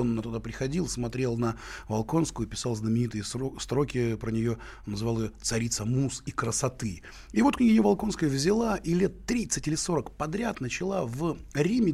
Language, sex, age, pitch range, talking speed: Russian, male, 30-49, 115-160 Hz, 165 wpm